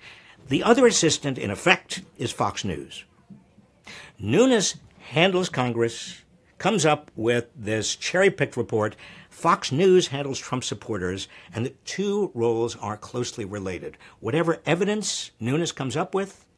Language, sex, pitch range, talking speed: English, male, 115-170 Hz, 125 wpm